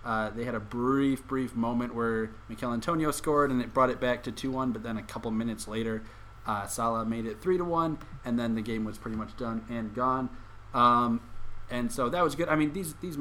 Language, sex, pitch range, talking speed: English, male, 110-130 Hz, 225 wpm